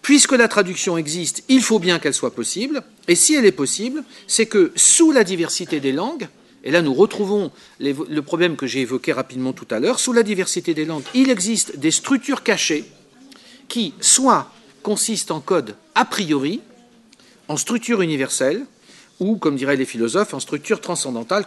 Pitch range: 160-240 Hz